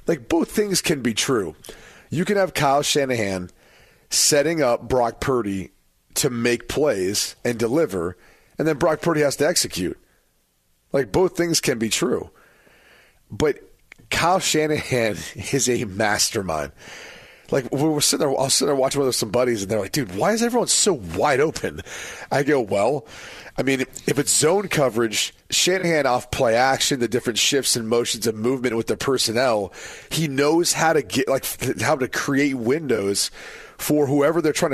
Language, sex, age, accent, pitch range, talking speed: English, male, 40-59, American, 120-150 Hz, 170 wpm